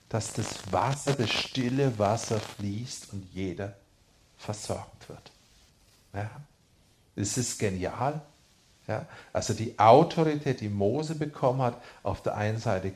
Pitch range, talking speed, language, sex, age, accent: 105-145 Hz, 125 wpm, German, male, 40-59, German